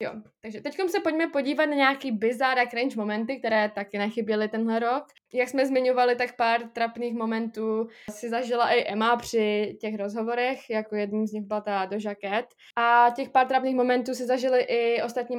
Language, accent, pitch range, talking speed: Czech, native, 220-245 Hz, 175 wpm